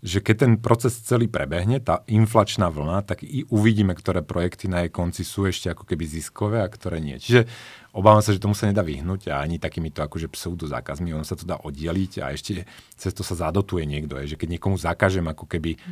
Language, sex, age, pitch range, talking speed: Slovak, male, 40-59, 85-110 Hz, 220 wpm